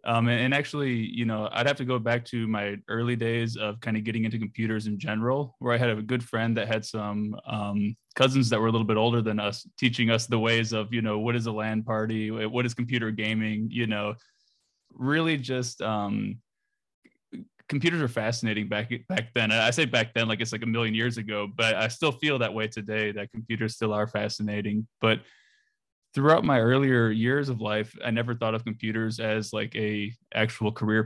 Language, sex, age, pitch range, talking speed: English, male, 20-39, 110-120 Hz, 210 wpm